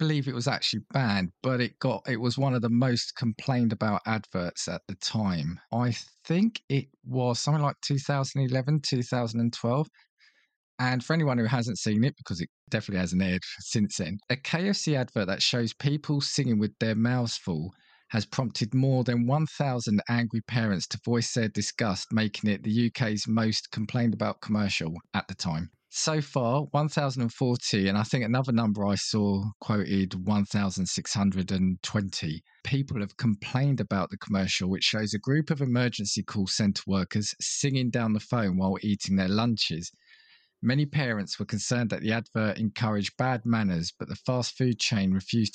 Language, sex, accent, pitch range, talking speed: English, male, British, 100-125 Hz, 165 wpm